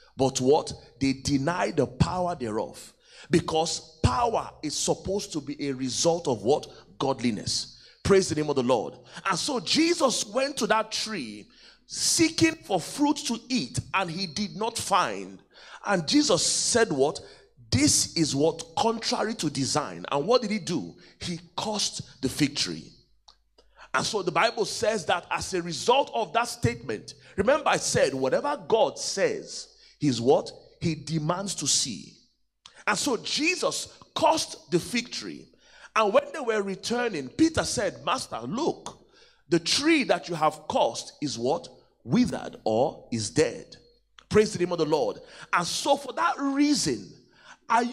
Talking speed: 155 wpm